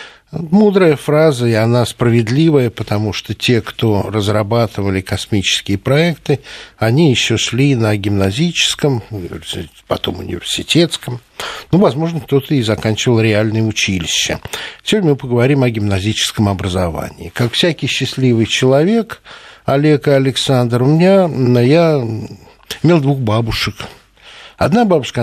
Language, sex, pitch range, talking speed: Russian, male, 105-145 Hz, 110 wpm